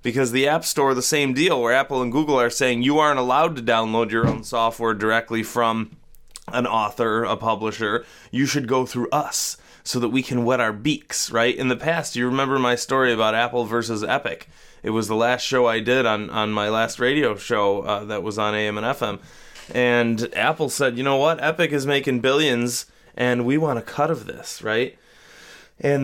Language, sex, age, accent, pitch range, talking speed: English, male, 20-39, American, 115-135 Hz, 205 wpm